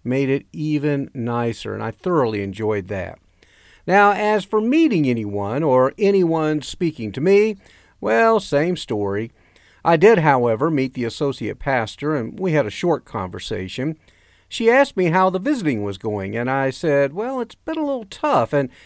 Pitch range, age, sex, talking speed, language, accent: 115-170 Hz, 50-69, male, 170 wpm, English, American